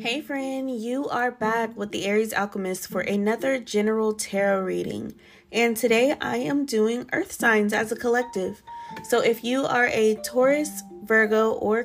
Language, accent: English, American